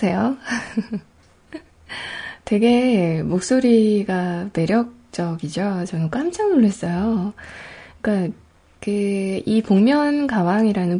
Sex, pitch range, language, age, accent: female, 185-260 Hz, Korean, 20-39, native